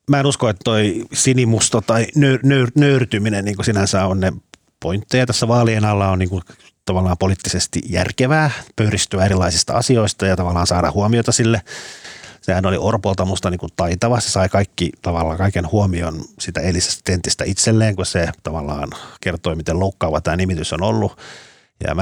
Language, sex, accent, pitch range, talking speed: Finnish, male, native, 85-110 Hz, 160 wpm